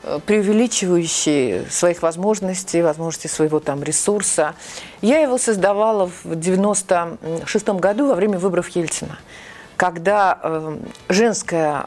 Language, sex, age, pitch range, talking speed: Russian, female, 40-59, 160-205 Hz, 95 wpm